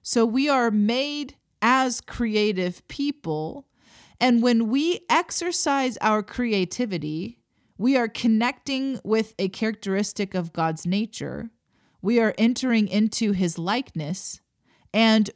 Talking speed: 115 wpm